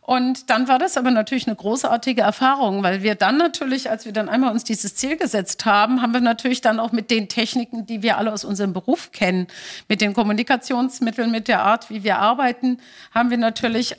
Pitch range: 210-245 Hz